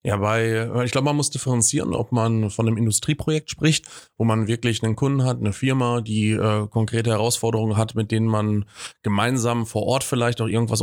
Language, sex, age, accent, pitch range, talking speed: German, male, 30-49, German, 110-120 Hz, 190 wpm